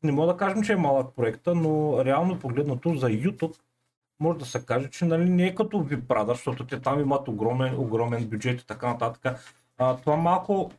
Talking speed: 200 wpm